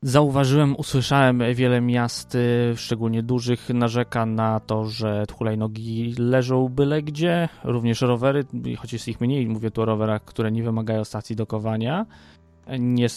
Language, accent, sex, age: Polish, native, male, 20-39